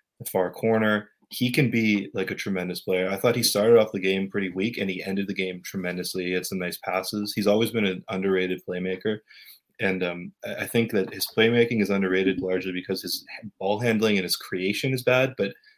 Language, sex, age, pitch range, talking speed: English, male, 20-39, 95-115 Hz, 210 wpm